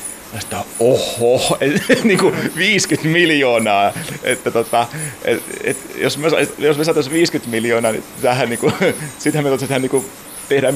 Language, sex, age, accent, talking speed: Finnish, male, 30-49, native, 105 wpm